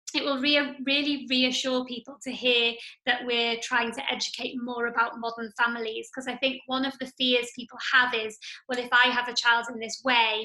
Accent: British